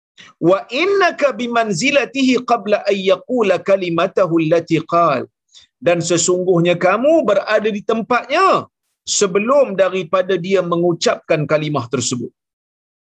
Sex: male